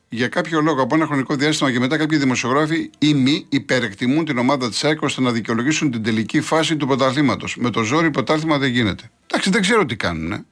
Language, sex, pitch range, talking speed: Greek, male, 130-180 Hz, 210 wpm